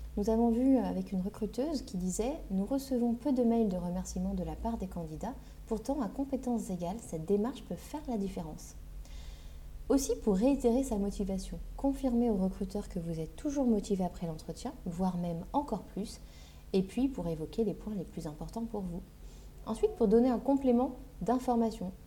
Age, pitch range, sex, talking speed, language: 30-49, 175-235 Hz, female, 180 wpm, French